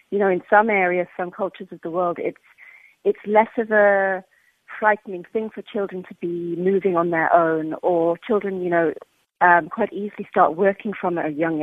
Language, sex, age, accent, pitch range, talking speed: English, female, 40-59, British, 160-200 Hz, 190 wpm